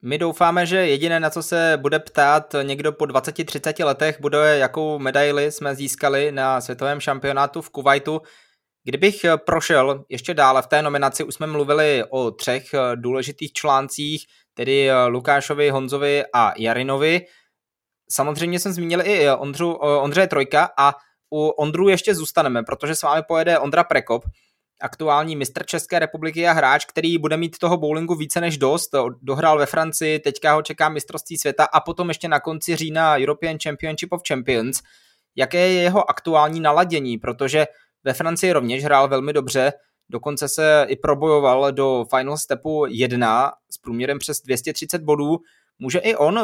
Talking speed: 155 wpm